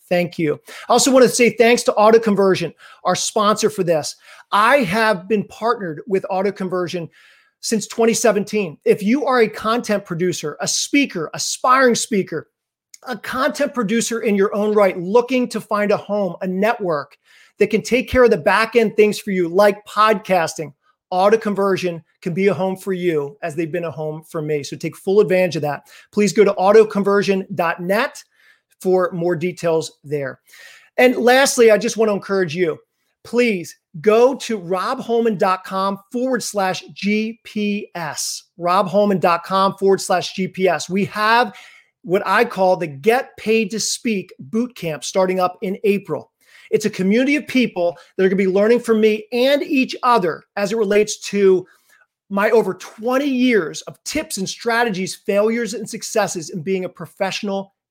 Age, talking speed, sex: 40-59, 165 wpm, male